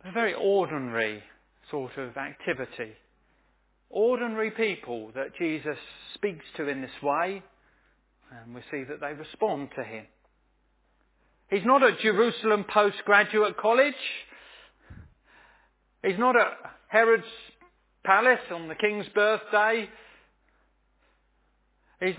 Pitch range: 130-210 Hz